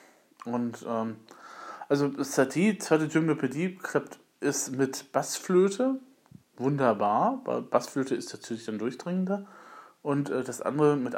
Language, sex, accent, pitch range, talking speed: German, male, German, 115-160 Hz, 120 wpm